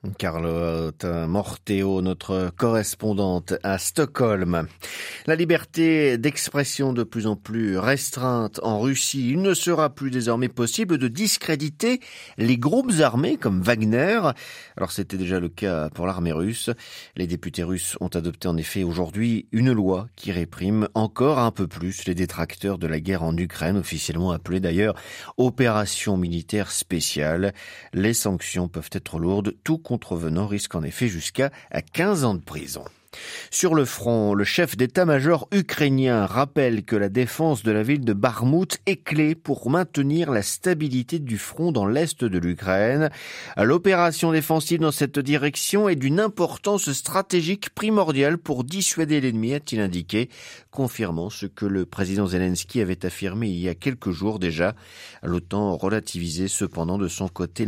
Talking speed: 150 wpm